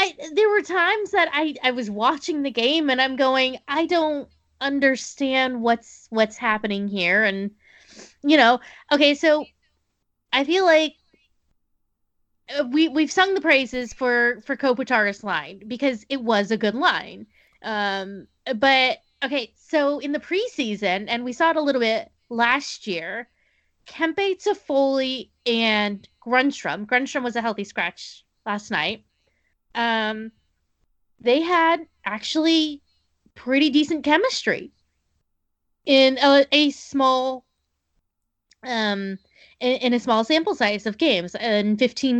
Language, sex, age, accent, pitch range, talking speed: English, female, 20-39, American, 220-295 Hz, 130 wpm